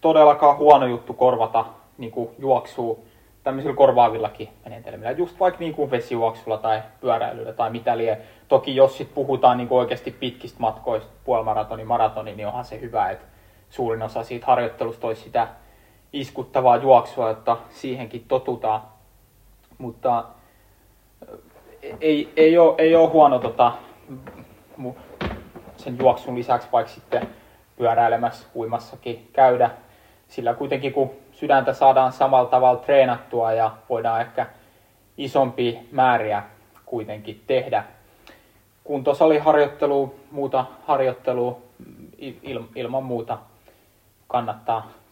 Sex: male